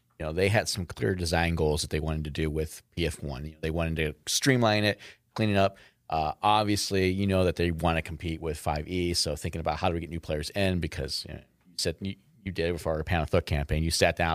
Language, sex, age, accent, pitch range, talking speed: English, male, 30-49, American, 80-100 Hz, 255 wpm